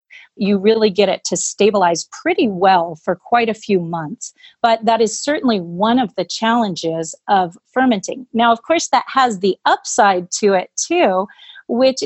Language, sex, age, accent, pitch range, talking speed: English, female, 40-59, American, 190-245 Hz, 170 wpm